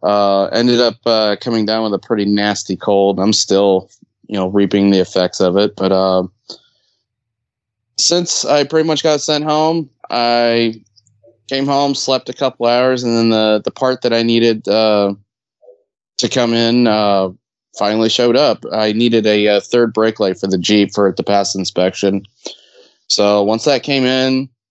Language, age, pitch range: English, 20-39, 105-120 Hz